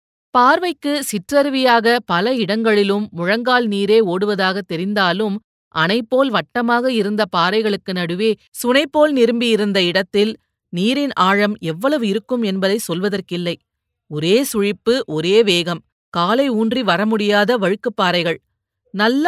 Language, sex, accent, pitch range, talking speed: Tamil, female, native, 185-235 Hz, 100 wpm